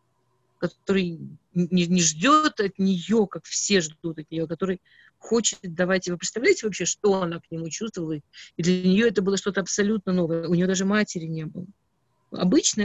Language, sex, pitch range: Russian, female, 170-210 Hz